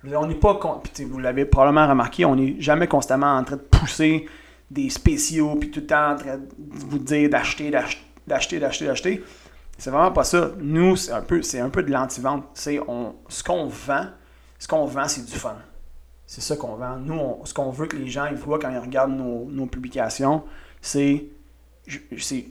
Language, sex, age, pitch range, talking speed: French, male, 30-49, 125-150 Hz, 205 wpm